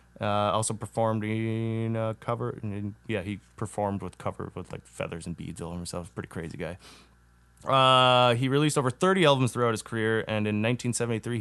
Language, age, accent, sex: English, 20-39, American, male